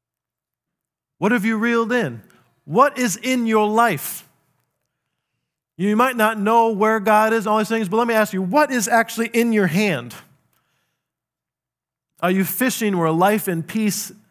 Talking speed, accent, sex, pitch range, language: 160 wpm, American, male, 140-200 Hz, English